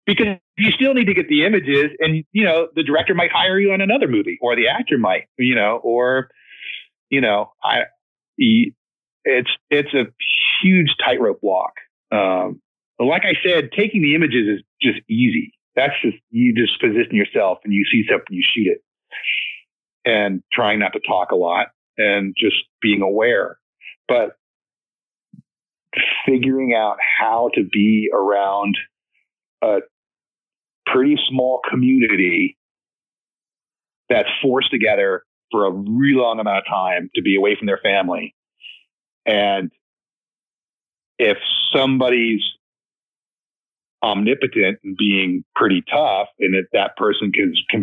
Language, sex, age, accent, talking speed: English, male, 40-59, American, 140 wpm